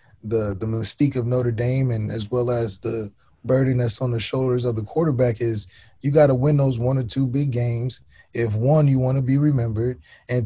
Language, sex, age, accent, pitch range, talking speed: English, male, 20-39, American, 115-130 Hz, 220 wpm